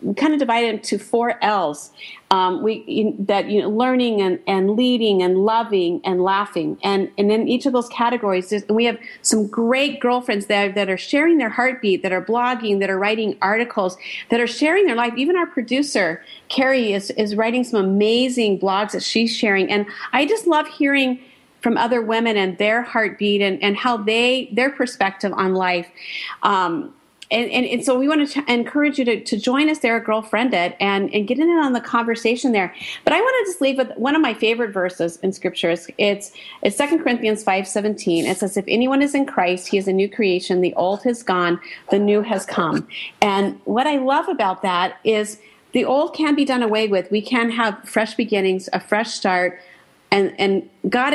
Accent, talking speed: American, 205 wpm